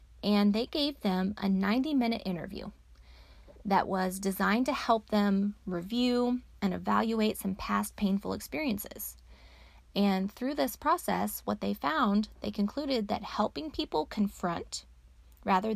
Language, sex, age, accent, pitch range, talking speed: English, female, 30-49, American, 170-225 Hz, 135 wpm